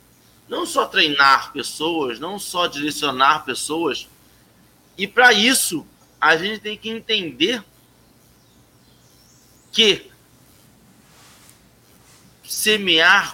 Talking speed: 80 wpm